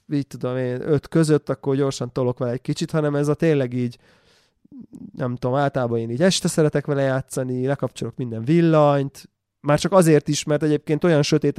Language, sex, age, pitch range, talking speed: Hungarian, male, 20-39, 120-145 Hz, 185 wpm